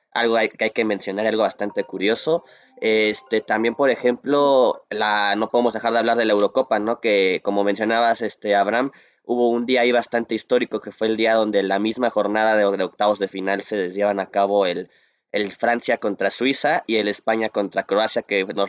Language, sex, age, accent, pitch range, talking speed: Spanish, male, 20-39, Mexican, 105-125 Hz, 200 wpm